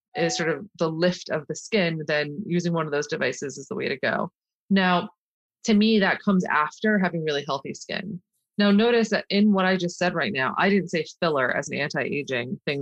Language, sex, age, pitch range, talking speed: English, female, 30-49, 155-200 Hz, 220 wpm